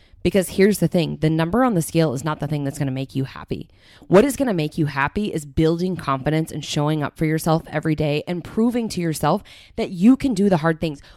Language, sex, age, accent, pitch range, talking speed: English, female, 20-39, American, 155-210 Hz, 250 wpm